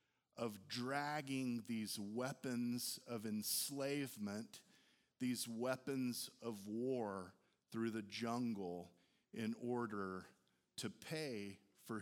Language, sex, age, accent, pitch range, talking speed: English, male, 40-59, American, 110-135 Hz, 90 wpm